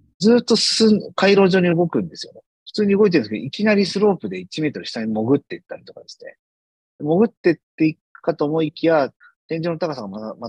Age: 40-59